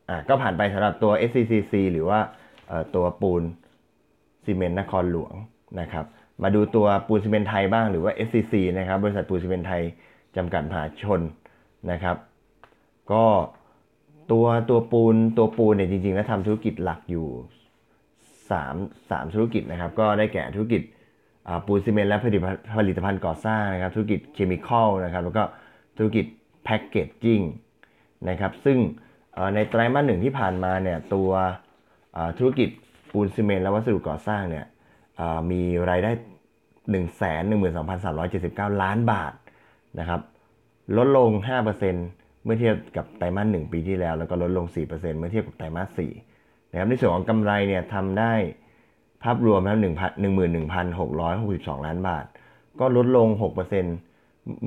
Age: 20-39